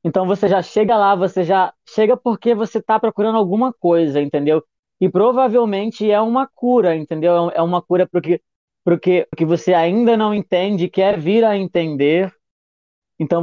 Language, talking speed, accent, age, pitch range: Portuguese, 165 wpm, Brazilian, 20-39, 170-220 Hz